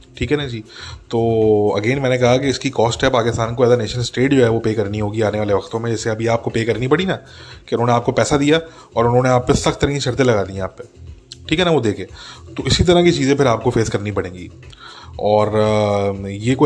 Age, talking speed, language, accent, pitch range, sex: 20-39, 235 wpm, English, Indian, 110-135 Hz, male